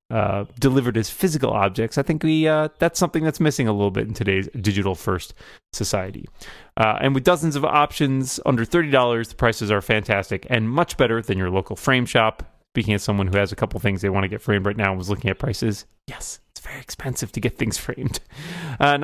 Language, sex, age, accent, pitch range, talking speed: English, male, 30-49, American, 110-150 Hz, 225 wpm